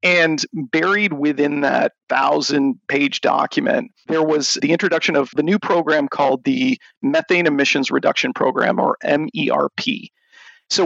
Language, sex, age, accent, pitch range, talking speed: English, male, 40-59, American, 145-195 Hz, 135 wpm